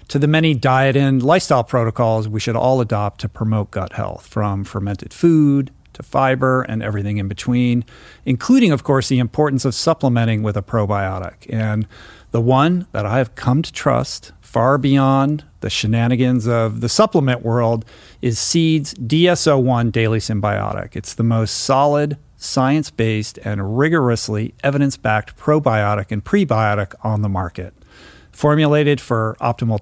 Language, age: English, 50-69